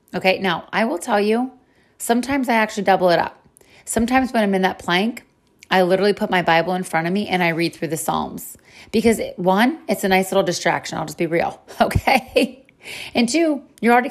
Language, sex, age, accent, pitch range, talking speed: English, female, 30-49, American, 175-230 Hz, 210 wpm